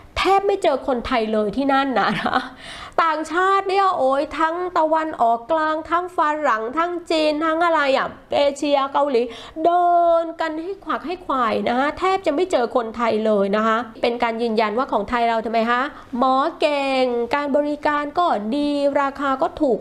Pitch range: 220-295 Hz